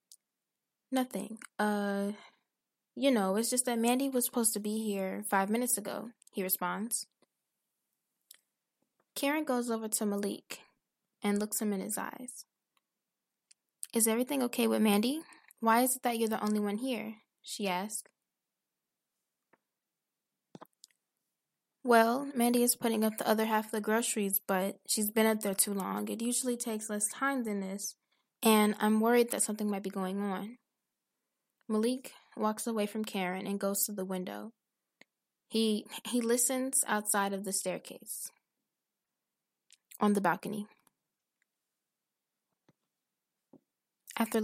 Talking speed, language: 135 wpm, English